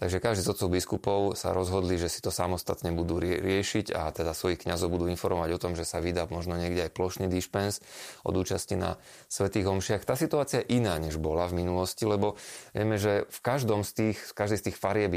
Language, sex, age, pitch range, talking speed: Slovak, male, 30-49, 85-100 Hz, 215 wpm